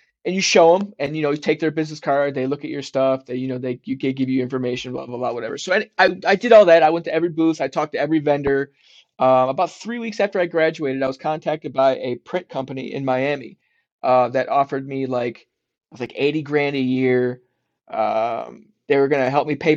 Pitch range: 130-150 Hz